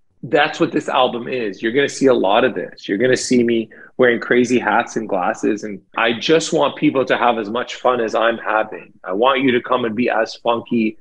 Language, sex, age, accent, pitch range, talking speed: English, male, 30-49, American, 110-130 Hz, 245 wpm